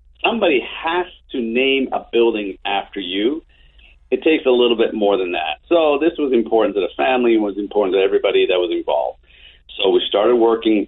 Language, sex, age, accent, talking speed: English, male, 40-59, American, 195 wpm